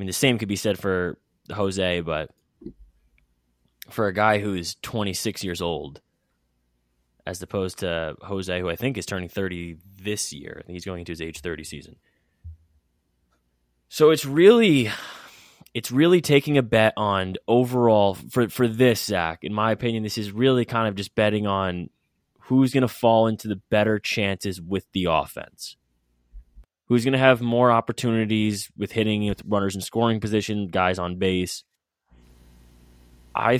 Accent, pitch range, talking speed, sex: American, 85-110 Hz, 165 wpm, male